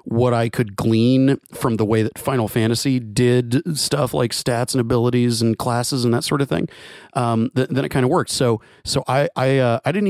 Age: 30-49